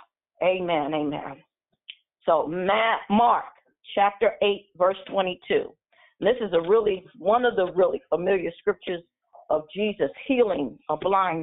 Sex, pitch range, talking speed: female, 180-250 Hz, 120 wpm